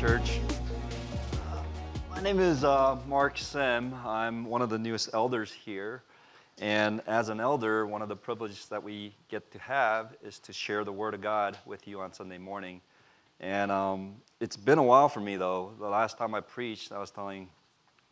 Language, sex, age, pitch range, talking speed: English, male, 30-49, 95-110 Hz, 185 wpm